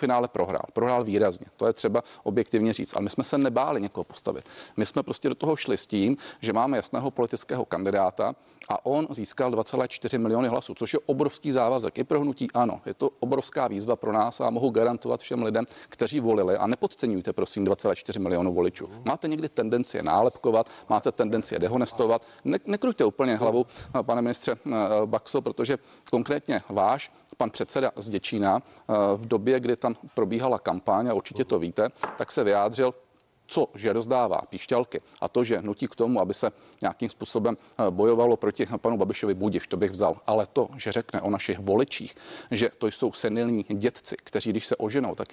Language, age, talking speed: Czech, 40-59, 175 wpm